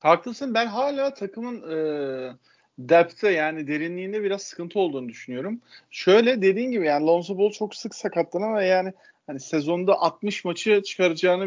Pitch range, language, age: 160-240 Hz, Turkish, 40-59